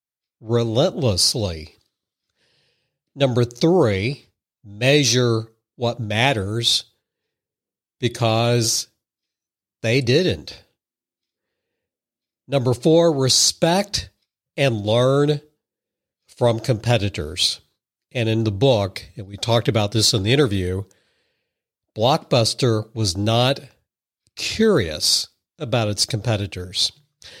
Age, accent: 60-79, American